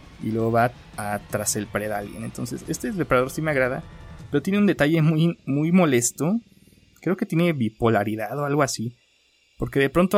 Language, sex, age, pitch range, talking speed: Spanish, male, 30-49, 110-140 Hz, 185 wpm